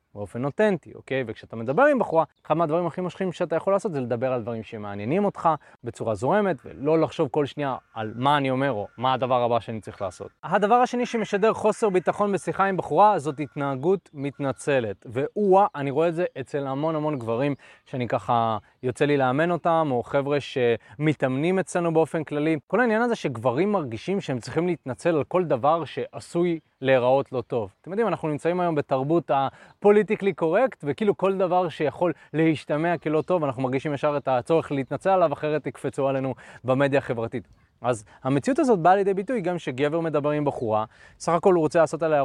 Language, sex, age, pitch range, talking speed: Hebrew, male, 20-39, 135-190 Hz, 185 wpm